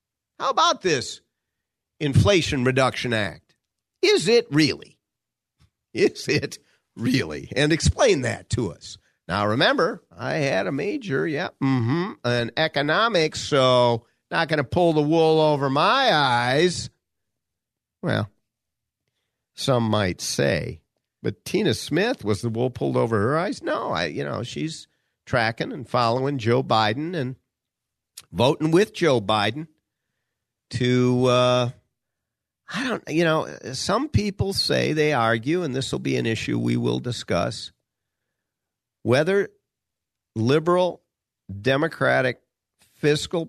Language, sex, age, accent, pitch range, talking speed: English, male, 50-69, American, 110-155 Hz, 125 wpm